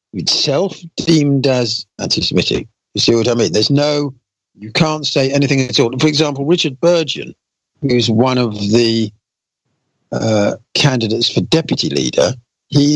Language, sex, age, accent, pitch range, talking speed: English, male, 50-69, British, 105-140 Hz, 145 wpm